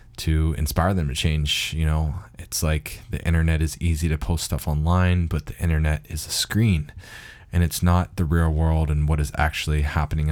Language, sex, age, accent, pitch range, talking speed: English, male, 20-39, American, 75-90 Hz, 200 wpm